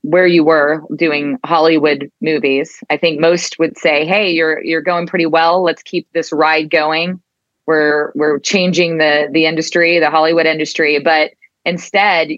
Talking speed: 160 wpm